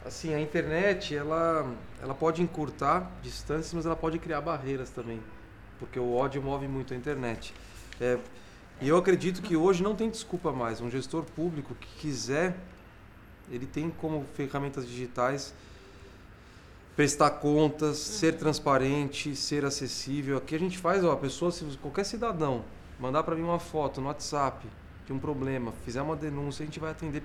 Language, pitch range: Portuguese, 130-165 Hz